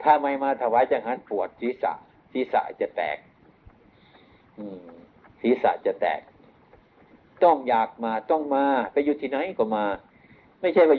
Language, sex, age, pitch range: Thai, male, 60-79, 120-160 Hz